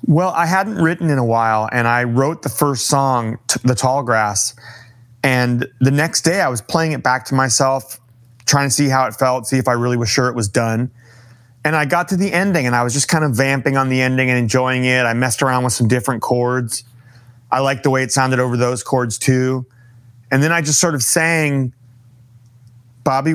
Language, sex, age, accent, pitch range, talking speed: English, male, 30-49, American, 120-150 Hz, 220 wpm